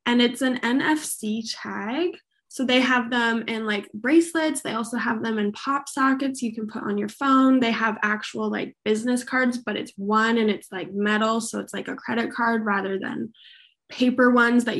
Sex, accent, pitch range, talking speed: female, American, 215-265 Hz, 200 wpm